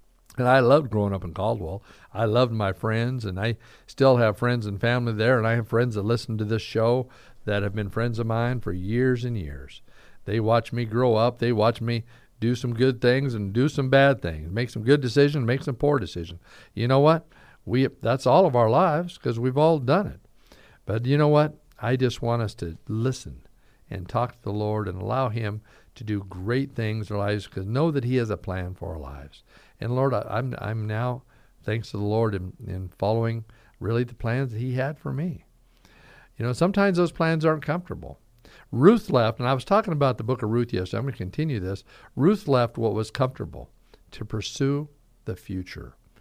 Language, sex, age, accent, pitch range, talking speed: English, male, 50-69, American, 110-135 Hz, 215 wpm